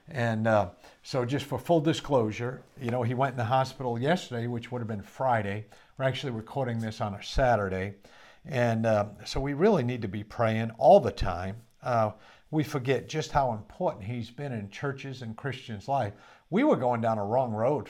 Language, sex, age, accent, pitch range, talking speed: English, male, 50-69, American, 110-140 Hz, 200 wpm